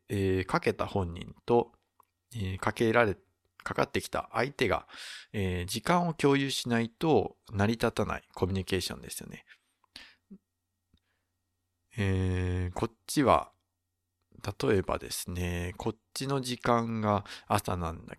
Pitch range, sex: 90-120 Hz, male